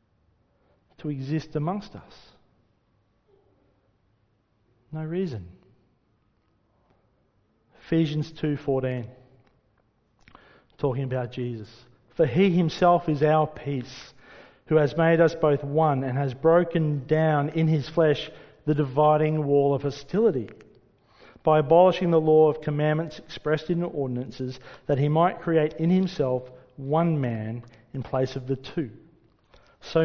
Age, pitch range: 40-59, 120-155 Hz